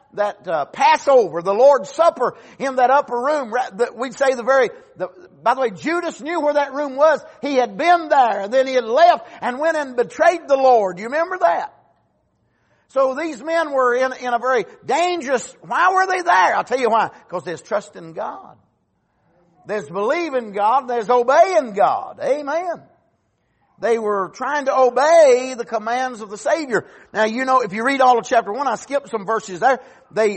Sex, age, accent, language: male, 50-69, American, English